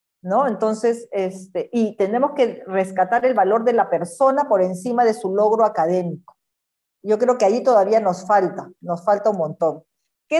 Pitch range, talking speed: 195-255 Hz, 175 wpm